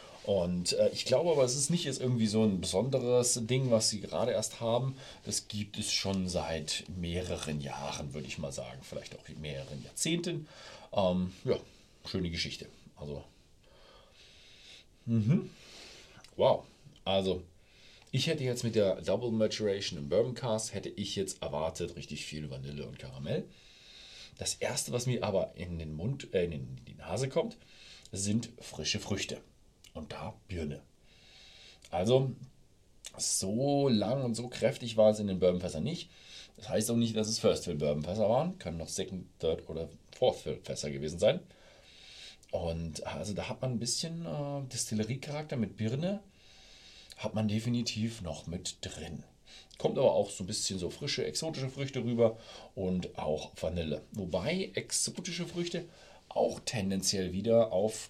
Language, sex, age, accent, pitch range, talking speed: German, male, 40-59, German, 90-120 Hz, 155 wpm